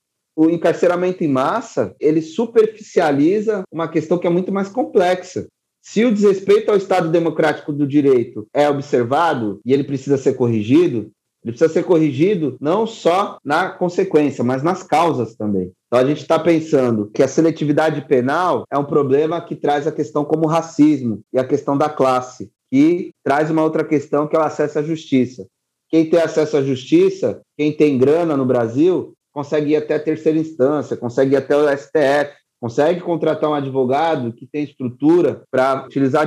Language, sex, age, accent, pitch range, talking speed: Portuguese, male, 30-49, Brazilian, 135-170 Hz, 170 wpm